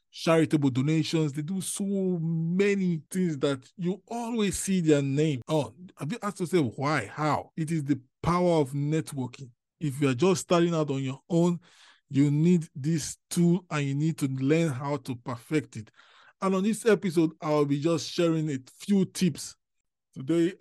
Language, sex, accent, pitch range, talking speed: English, male, Nigerian, 135-165 Hz, 180 wpm